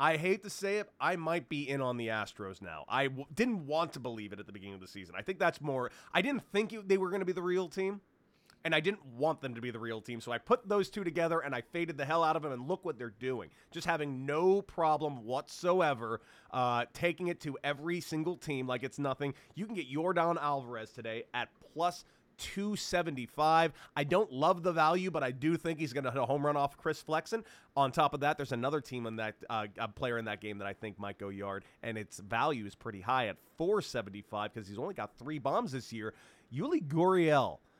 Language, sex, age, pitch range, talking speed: English, male, 30-49, 120-175 Hz, 240 wpm